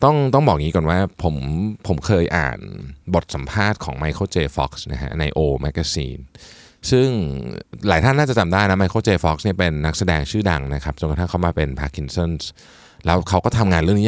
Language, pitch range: Thai, 75-105 Hz